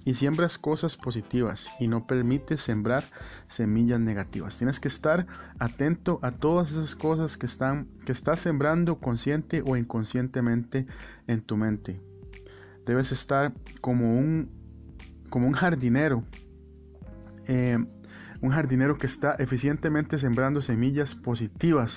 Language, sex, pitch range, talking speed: Spanish, male, 115-135 Hz, 115 wpm